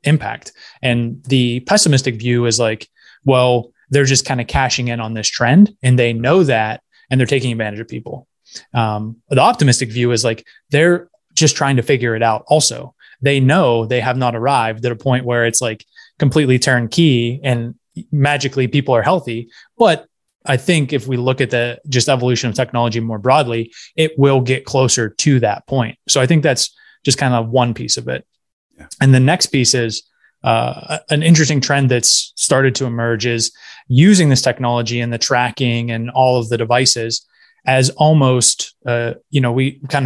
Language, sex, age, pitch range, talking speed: English, male, 20-39, 120-140 Hz, 185 wpm